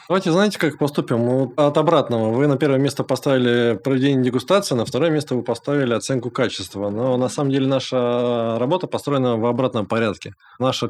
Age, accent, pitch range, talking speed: 20-39, native, 110-140 Hz, 170 wpm